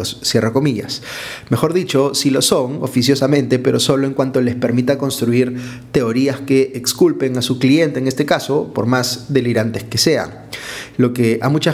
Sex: male